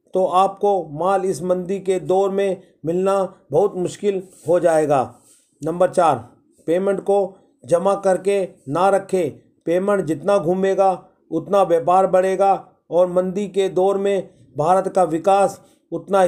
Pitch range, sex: 175-195 Hz, male